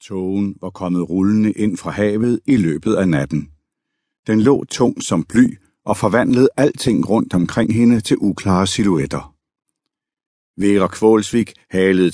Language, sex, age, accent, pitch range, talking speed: Danish, male, 60-79, native, 90-115 Hz, 140 wpm